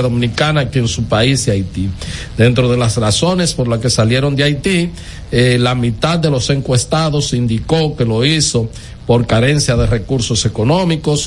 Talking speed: 165 wpm